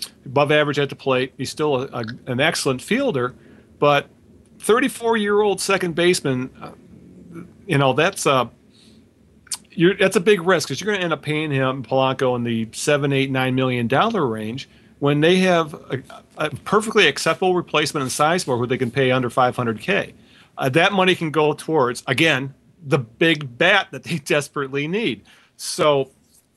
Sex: male